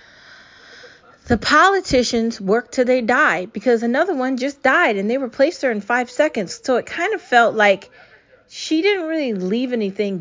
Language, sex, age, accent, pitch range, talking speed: English, female, 30-49, American, 195-245 Hz, 170 wpm